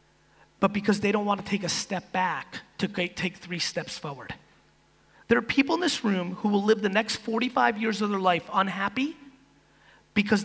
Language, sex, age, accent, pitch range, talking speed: English, male, 30-49, American, 180-225 Hz, 190 wpm